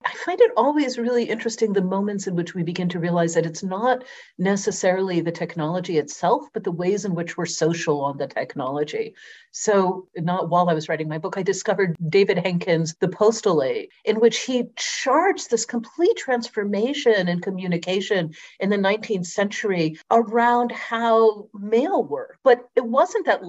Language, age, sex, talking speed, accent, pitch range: English, 50-69, female, 170 wpm, American, 175-240 Hz